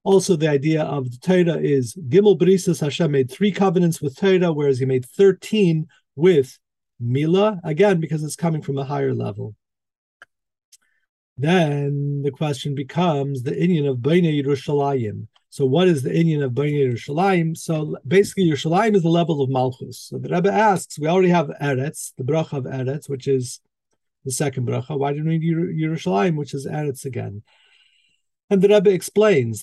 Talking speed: 170 wpm